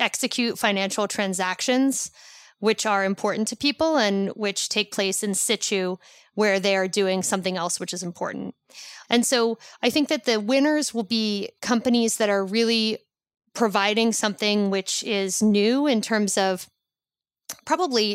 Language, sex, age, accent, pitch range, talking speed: English, female, 30-49, American, 195-225 Hz, 150 wpm